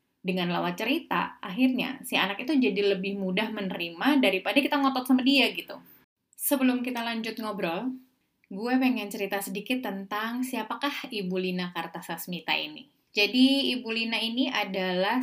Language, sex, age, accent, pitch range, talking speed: Indonesian, female, 20-39, native, 180-250 Hz, 140 wpm